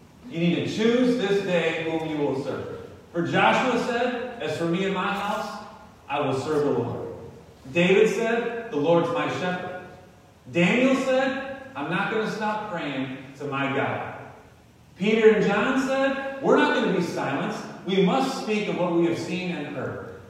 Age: 40-59